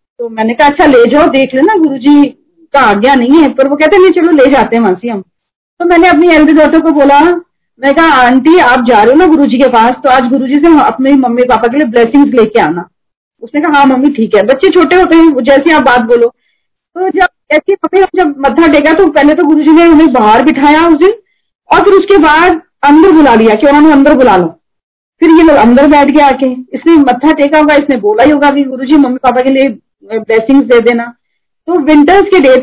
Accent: native